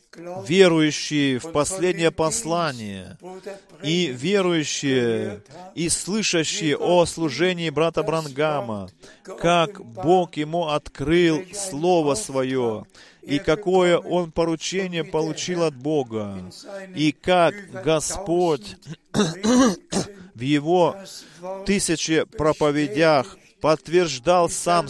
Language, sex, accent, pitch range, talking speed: Russian, male, native, 150-185 Hz, 80 wpm